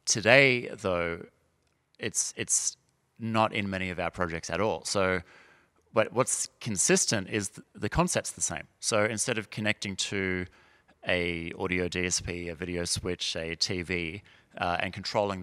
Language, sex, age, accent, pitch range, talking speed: English, male, 30-49, Australian, 90-105 Hz, 150 wpm